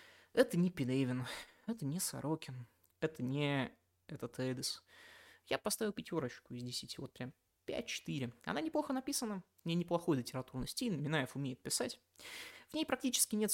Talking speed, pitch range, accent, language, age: 145 wpm, 130-205 Hz, native, Russian, 20-39